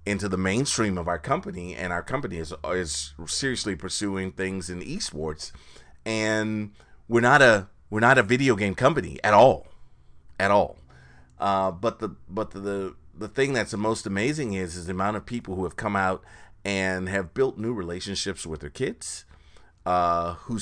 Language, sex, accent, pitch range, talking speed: English, male, American, 85-105 Hz, 180 wpm